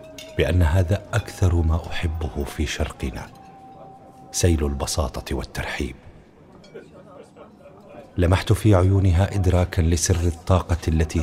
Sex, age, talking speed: male, 40-59, 90 wpm